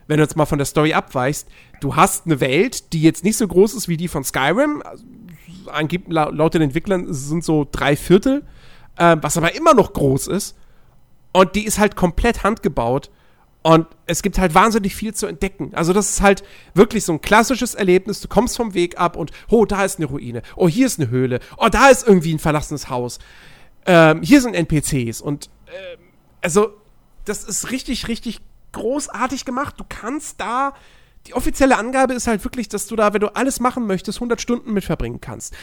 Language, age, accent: German, 40-59, German